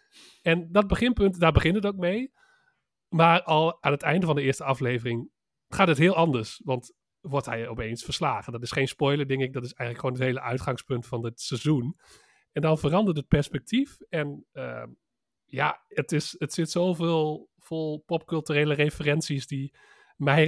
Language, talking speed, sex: Dutch, 175 wpm, male